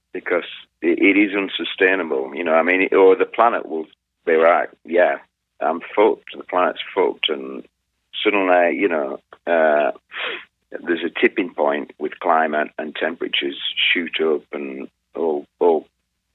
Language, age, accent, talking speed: English, 50-69, British, 135 wpm